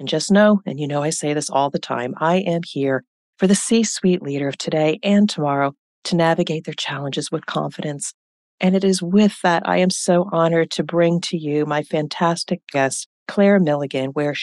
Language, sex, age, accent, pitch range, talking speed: English, female, 40-59, American, 140-175 Hz, 200 wpm